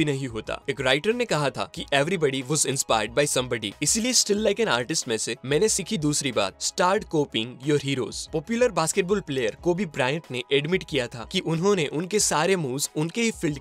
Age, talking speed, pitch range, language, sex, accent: 20-39, 65 wpm, 140-195 Hz, Hindi, male, native